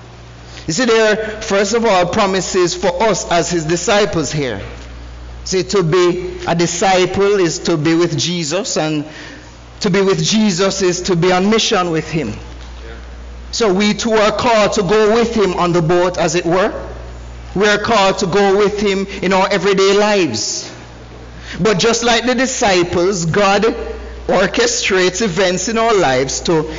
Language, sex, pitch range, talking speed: English, male, 155-220 Hz, 165 wpm